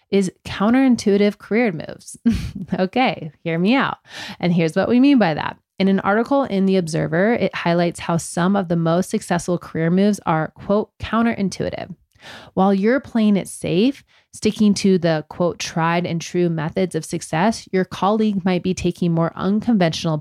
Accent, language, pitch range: American, English, 165-200 Hz